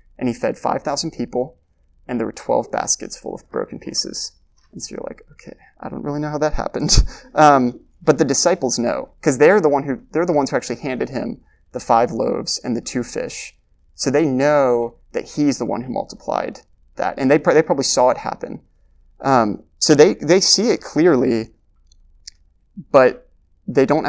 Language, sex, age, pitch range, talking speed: English, male, 20-39, 105-135 Hz, 195 wpm